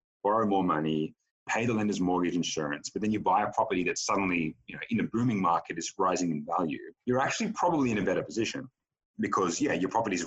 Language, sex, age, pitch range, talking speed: English, male, 30-49, 90-115 Hz, 220 wpm